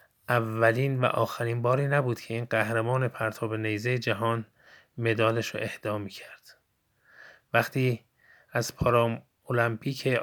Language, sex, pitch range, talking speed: Persian, male, 110-125 Hz, 110 wpm